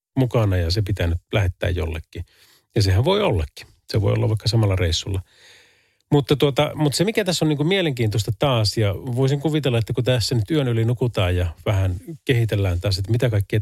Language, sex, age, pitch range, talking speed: Finnish, male, 40-59, 95-130 Hz, 195 wpm